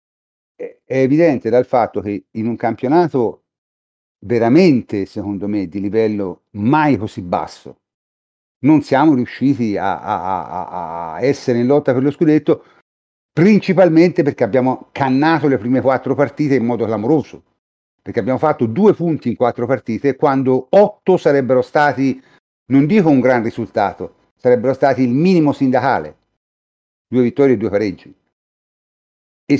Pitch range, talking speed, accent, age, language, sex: 110-145 Hz, 135 wpm, native, 50-69, Italian, male